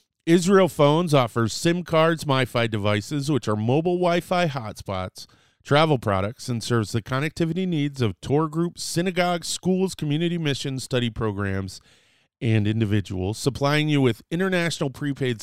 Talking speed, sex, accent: 135 wpm, male, American